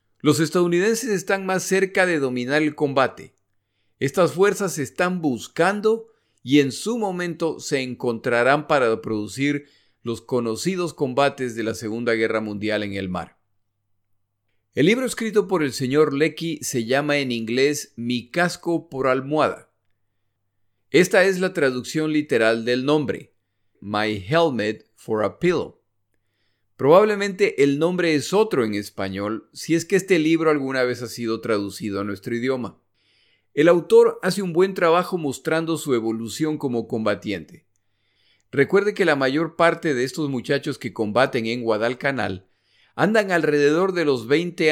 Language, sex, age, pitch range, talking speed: Spanish, male, 40-59, 115-170 Hz, 145 wpm